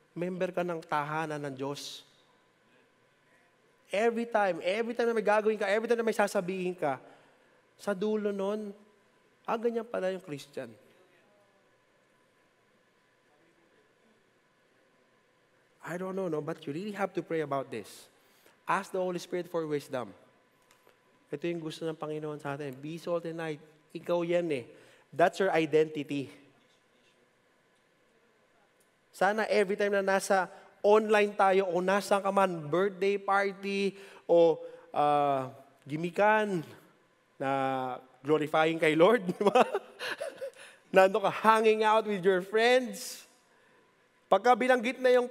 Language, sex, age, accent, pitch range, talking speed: English, male, 20-39, Filipino, 160-220 Hz, 125 wpm